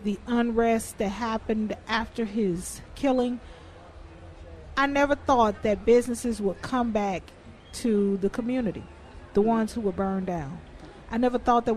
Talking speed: 145 wpm